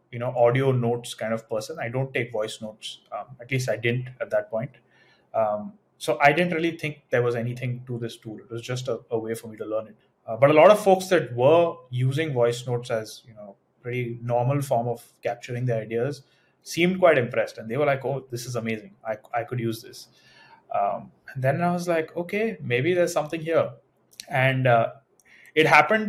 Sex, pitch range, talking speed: male, 115-145 Hz, 220 wpm